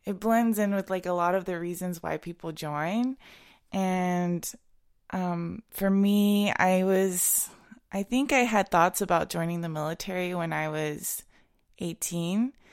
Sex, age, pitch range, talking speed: female, 20-39, 170-205 Hz, 150 wpm